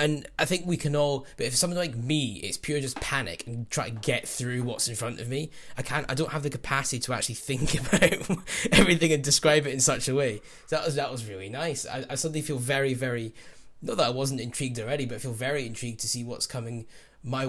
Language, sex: English, male